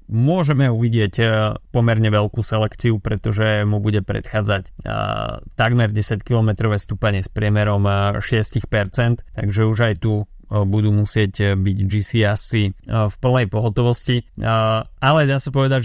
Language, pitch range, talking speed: Slovak, 105-120 Hz, 115 wpm